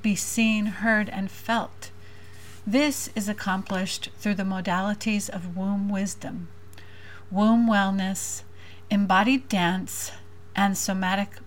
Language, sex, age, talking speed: English, female, 40-59, 105 wpm